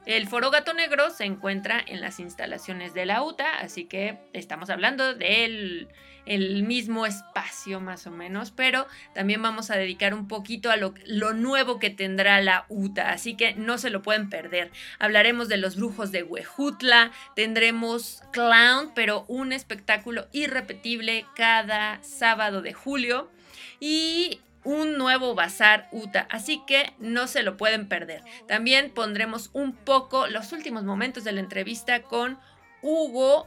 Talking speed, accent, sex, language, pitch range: 150 wpm, Mexican, female, Spanish, 200-255 Hz